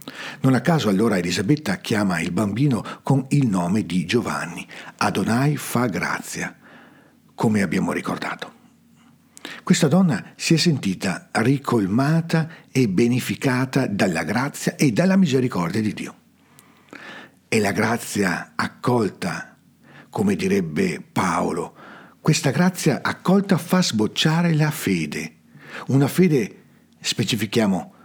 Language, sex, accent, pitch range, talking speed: Italian, male, native, 100-155 Hz, 110 wpm